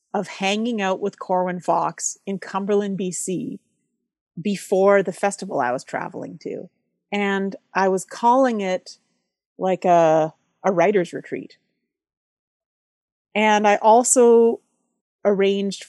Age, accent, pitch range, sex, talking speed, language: 30-49, American, 180-230 Hz, female, 115 wpm, English